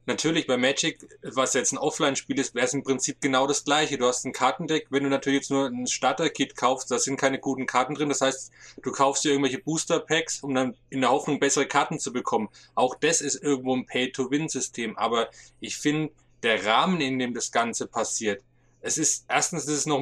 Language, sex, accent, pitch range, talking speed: German, male, German, 125-150 Hz, 215 wpm